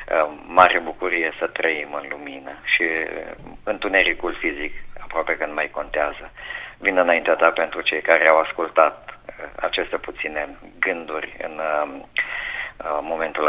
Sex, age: male, 50-69